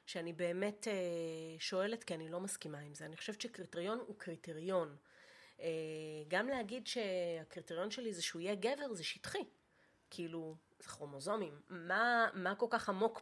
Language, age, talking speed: Hebrew, 30-49, 145 wpm